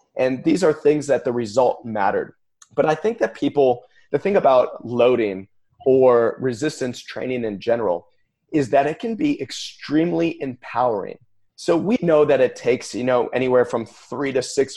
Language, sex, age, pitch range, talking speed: English, male, 30-49, 110-140 Hz, 170 wpm